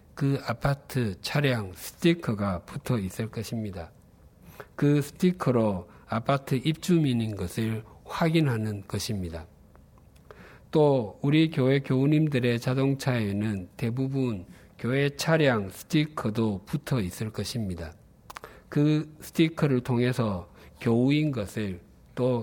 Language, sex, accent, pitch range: Korean, male, native, 105-140 Hz